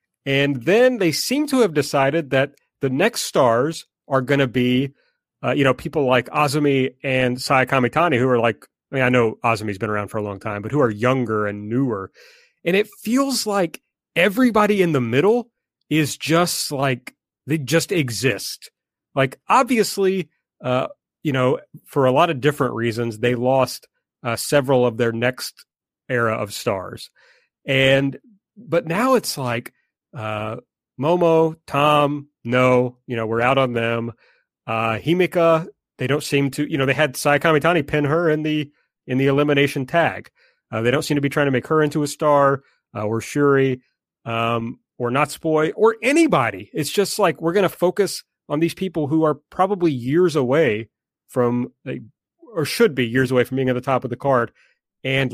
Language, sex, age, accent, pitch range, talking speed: English, male, 30-49, American, 125-160 Hz, 180 wpm